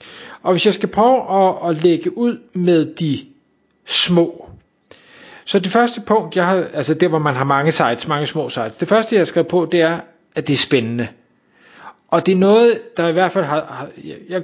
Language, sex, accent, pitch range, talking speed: Danish, male, native, 150-185 Hz, 210 wpm